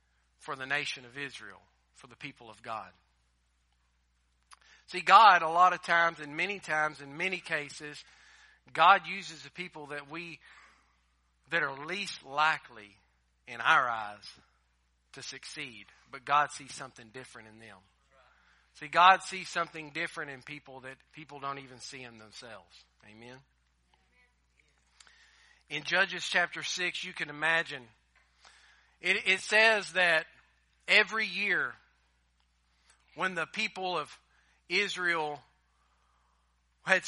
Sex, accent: male, American